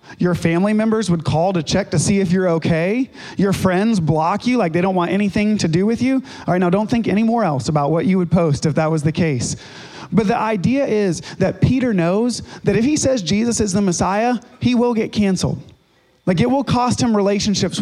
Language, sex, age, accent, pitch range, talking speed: English, male, 30-49, American, 160-210 Hz, 230 wpm